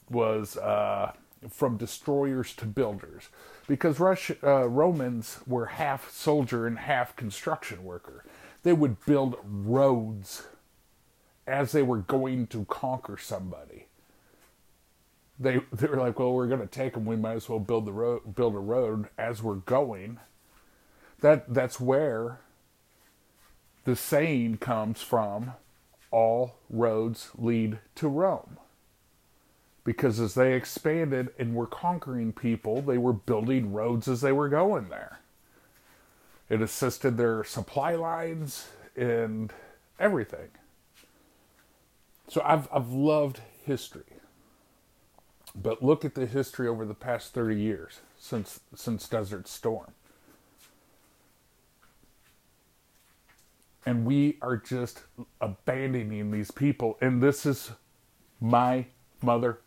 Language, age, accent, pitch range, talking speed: English, 50-69, American, 115-135 Hz, 120 wpm